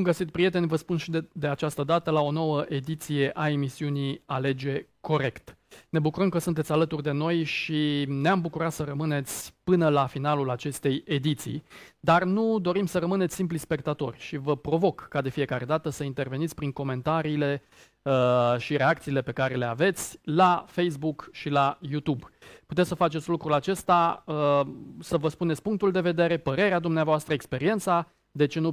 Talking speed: 175 wpm